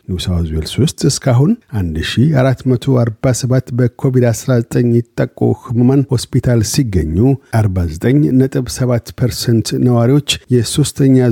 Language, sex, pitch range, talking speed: Amharic, male, 110-130 Hz, 75 wpm